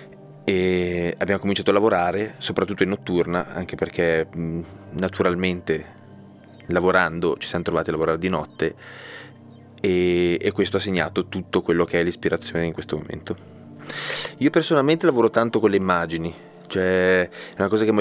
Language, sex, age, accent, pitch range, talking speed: Italian, male, 20-39, native, 90-105 Hz, 150 wpm